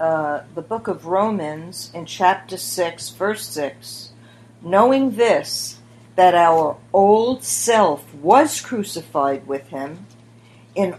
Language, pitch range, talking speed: English, 155-225 Hz, 115 wpm